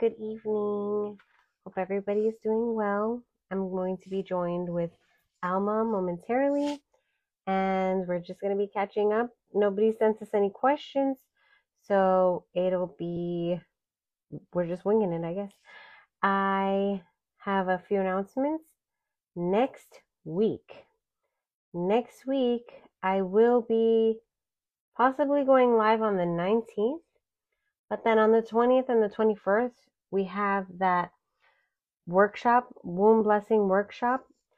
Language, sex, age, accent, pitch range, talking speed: English, female, 30-49, American, 180-225 Hz, 120 wpm